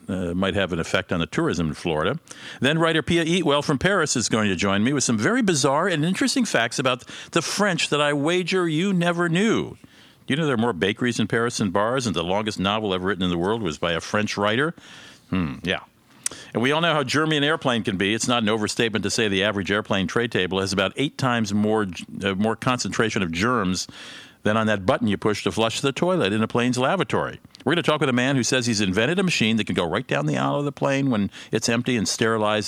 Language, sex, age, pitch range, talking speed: English, male, 50-69, 100-135 Hz, 250 wpm